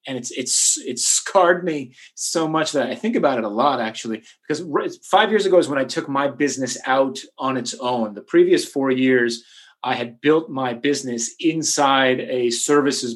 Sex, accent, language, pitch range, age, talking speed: male, American, English, 120-145 Hz, 30-49, 190 wpm